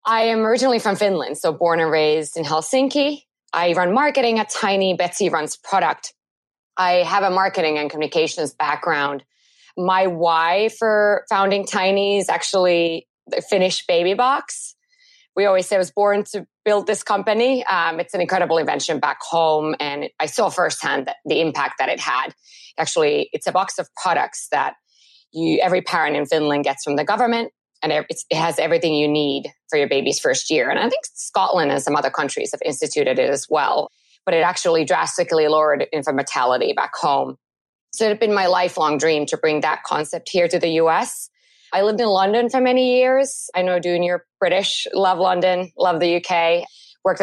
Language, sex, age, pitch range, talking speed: English, female, 20-39, 165-215 Hz, 185 wpm